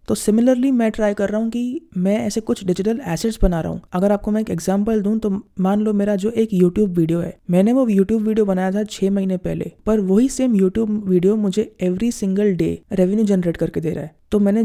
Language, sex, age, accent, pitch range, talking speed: Hindi, female, 20-39, native, 180-220 Hz, 240 wpm